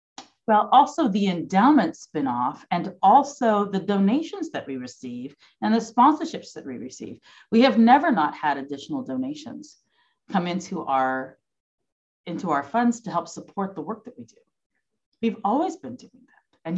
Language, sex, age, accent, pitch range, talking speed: English, female, 40-59, American, 160-260 Hz, 155 wpm